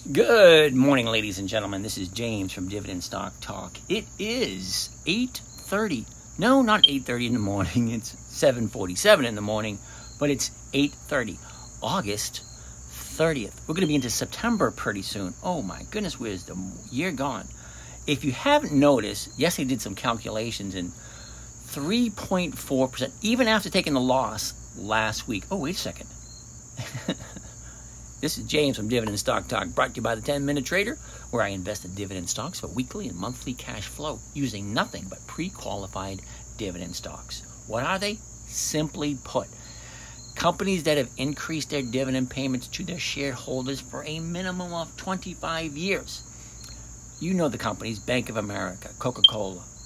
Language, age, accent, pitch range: English, 60-79, American, 95-145 Hz